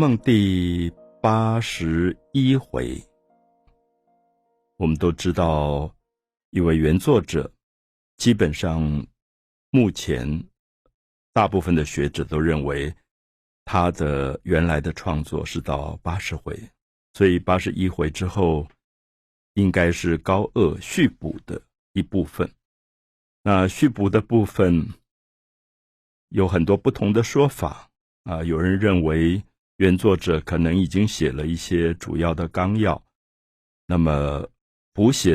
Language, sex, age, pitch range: Chinese, male, 50-69, 75-100 Hz